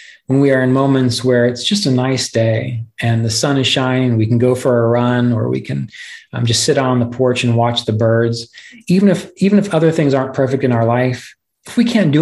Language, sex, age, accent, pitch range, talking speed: English, male, 30-49, American, 115-130 Hz, 245 wpm